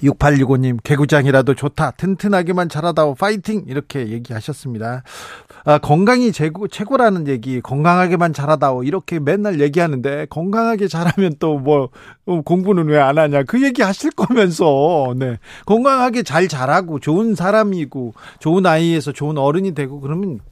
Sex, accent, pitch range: male, native, 135-175 Hz